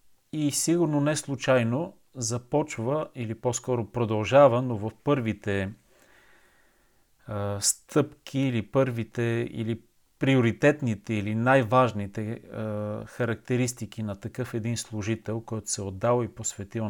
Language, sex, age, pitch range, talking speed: Bulgarian, male, 40-59, 115-140 Hz, 105 wpm